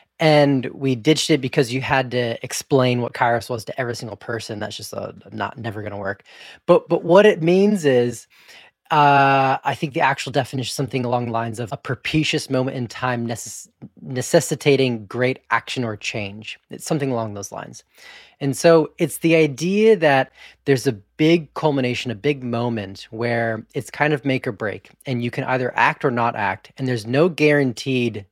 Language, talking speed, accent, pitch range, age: English, 190 wpm, American, 115-145 Hz, 20-39